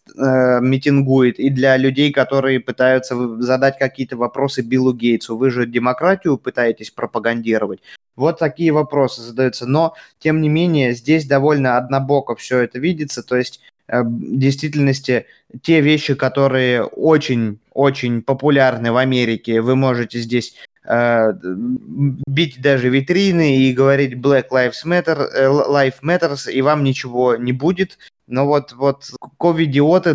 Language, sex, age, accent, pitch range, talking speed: Russian, male, 20-39, native, 125-145 Hz, 125 wpm